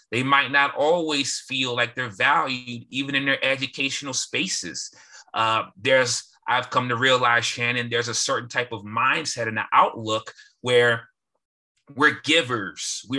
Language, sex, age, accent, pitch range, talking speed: English, male, 30-49, American, 115-135 Hz, 145 wpm